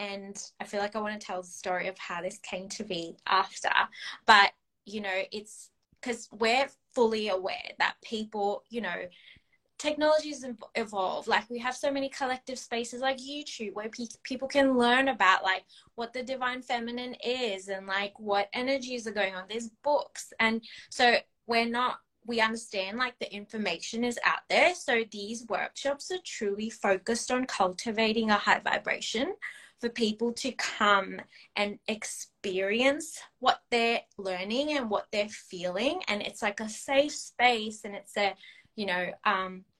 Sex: female